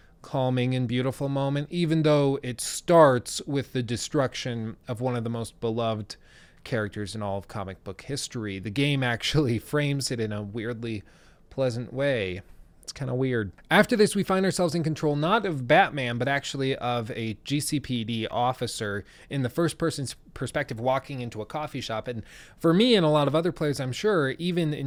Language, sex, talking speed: English, male, 185 wpm